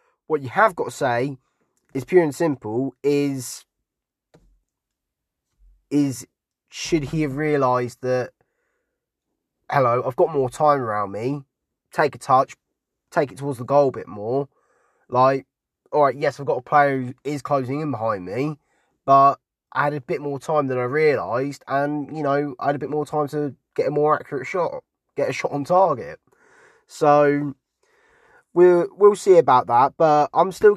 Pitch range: 125-150 Hz